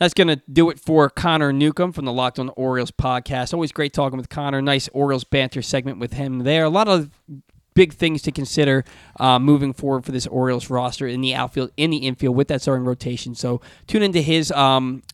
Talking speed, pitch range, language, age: 220 wpm, 135-170 Hz, English, 20-39